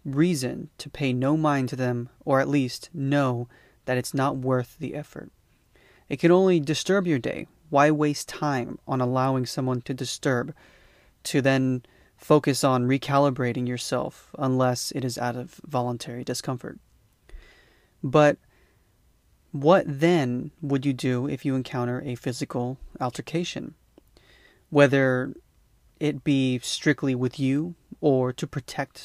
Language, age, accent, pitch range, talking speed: English, 30-49, American, 125-150 Hz, 135 wpm